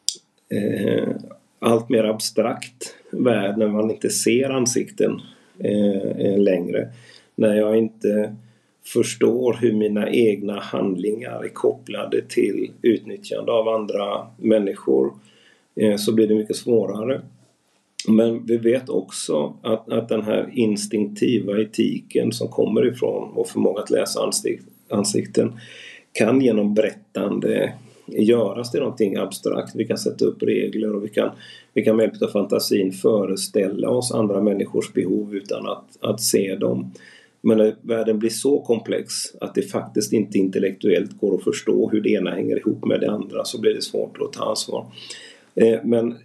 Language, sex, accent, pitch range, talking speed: Swedish, male, native, 105-115 Hz, 140 wpm